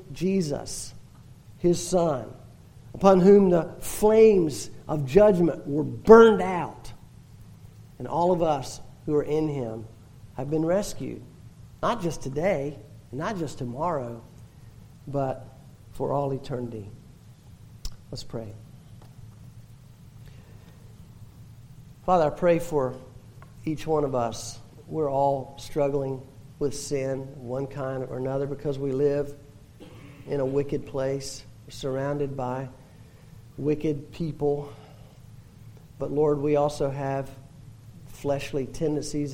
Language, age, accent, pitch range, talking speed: English, 50-69, American, 125-150 Hz, 105 wpm